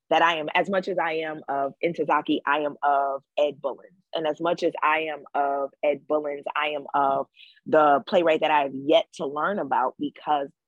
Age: 20-39